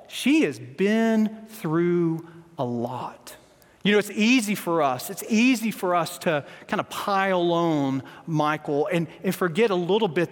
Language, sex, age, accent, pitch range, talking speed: English, male, 40-59, American, 175-265 Hz, 165 wpm